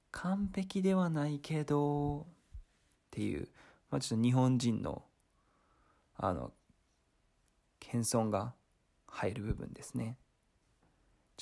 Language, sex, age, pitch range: Japanese, male, 20-39, 105-145 Hz